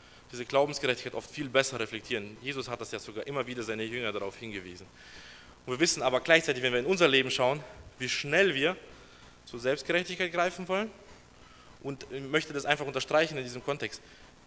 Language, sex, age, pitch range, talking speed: German, male, 20-39, 115-145 Hz, 185 wpm